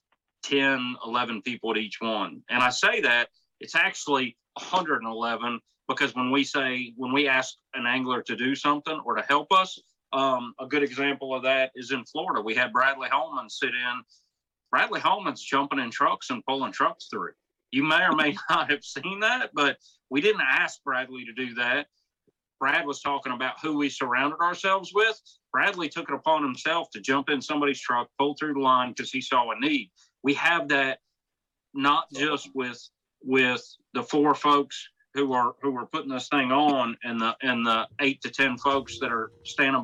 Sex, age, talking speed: male, 40-59, 190 wpm